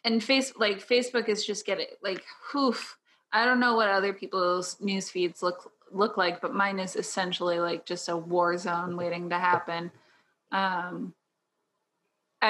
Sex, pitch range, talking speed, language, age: female, 180-230 Hz, 160 wpm, English, 20-39